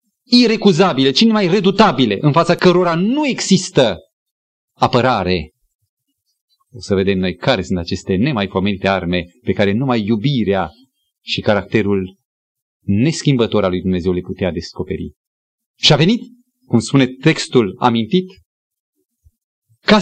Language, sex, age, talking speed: Romanian, male, 30-49, 115 wpm